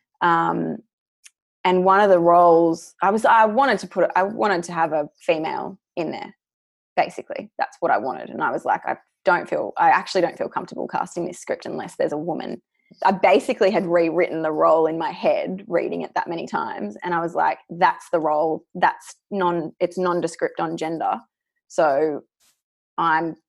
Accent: Australian